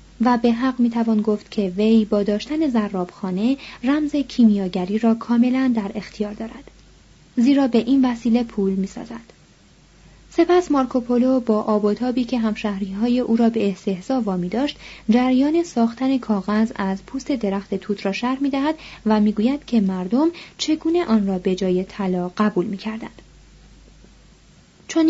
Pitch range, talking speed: 205-255 Hz, 150 wpm